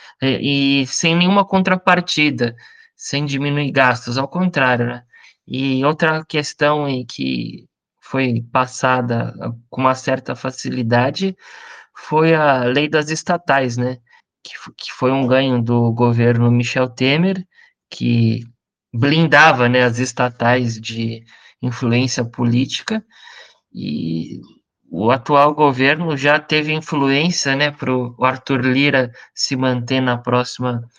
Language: Portuguese